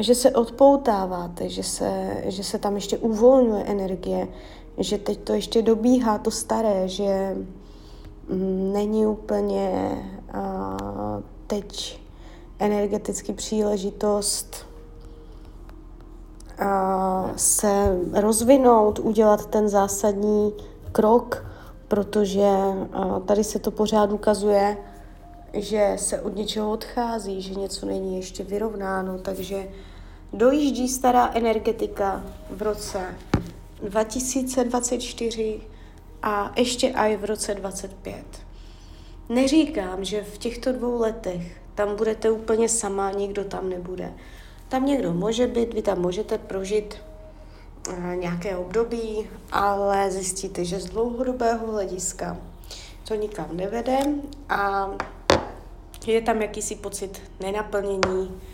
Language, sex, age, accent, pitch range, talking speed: Czech, female, 30-49, native, 185-220 Hz, 100 wpm